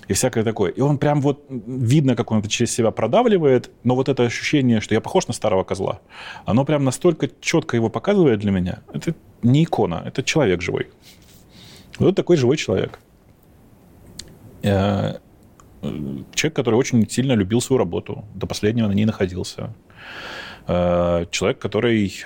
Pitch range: 90-115 Hz